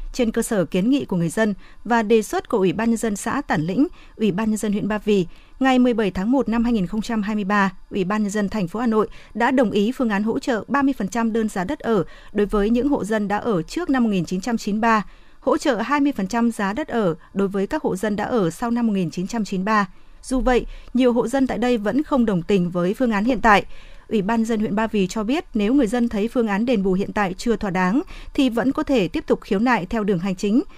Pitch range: 205-250 Hz